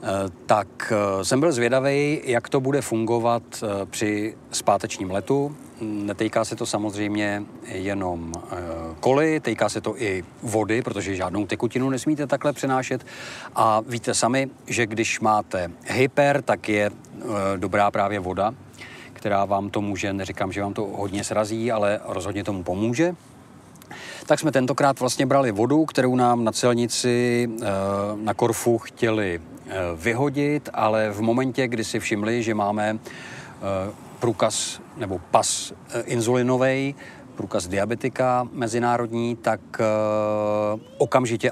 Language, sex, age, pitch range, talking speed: Czech, male, 40-59, 105-125 Hz, 125 wpm